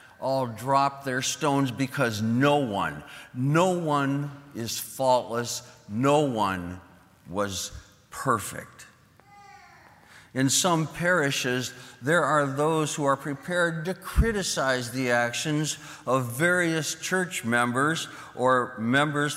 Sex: male